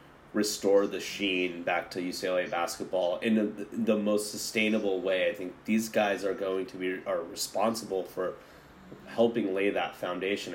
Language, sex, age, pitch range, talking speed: English, male, 30-49, 90-110 Hz, 160 wpm